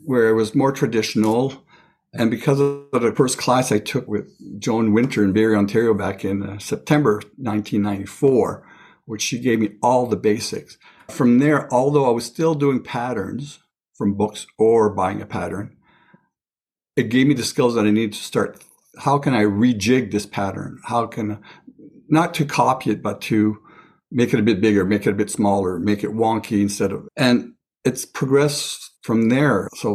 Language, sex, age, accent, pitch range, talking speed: English, male, 60-79, American, 105-130 Hz, 180 wpm